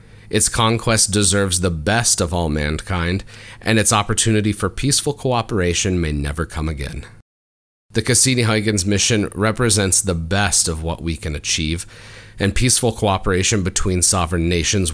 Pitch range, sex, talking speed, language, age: 90-110 Hz, male, 140 wpm, English, 30-49